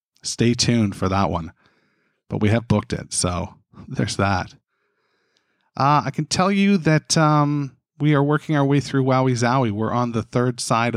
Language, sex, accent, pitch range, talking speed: English, male, American, 105-130 Hz, 180 wpm